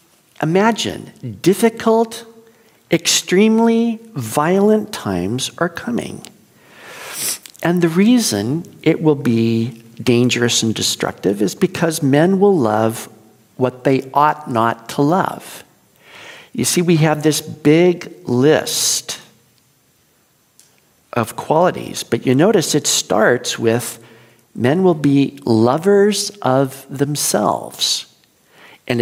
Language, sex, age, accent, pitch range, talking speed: English, male, 50-69, American, 125-195 Hz, 100 wpm